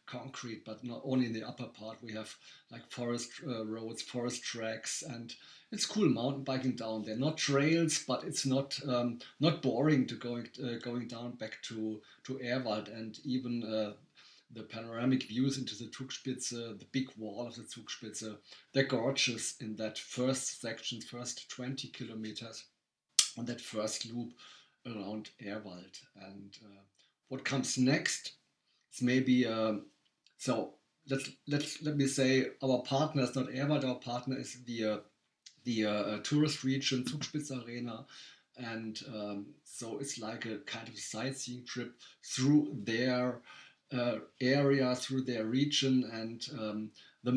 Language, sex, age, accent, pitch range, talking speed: German, male, 50-69, German, 115-135 Hz, 150 wpm